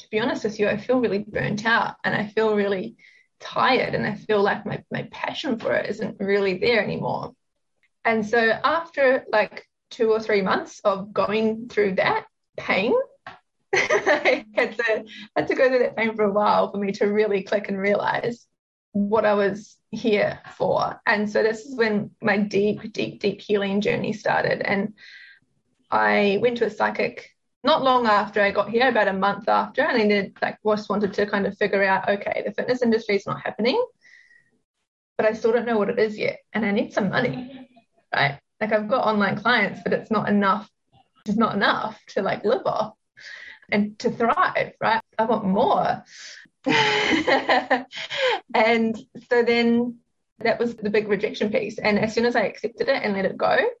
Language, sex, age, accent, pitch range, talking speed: English, female, 10-29, Australian, 205-240 Hz, 185 wpm